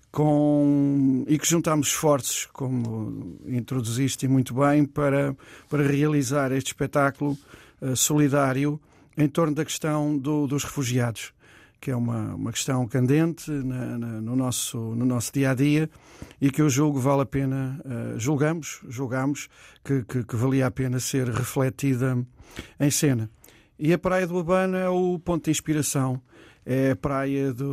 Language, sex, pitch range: Portuguese, male, 130-150 Hz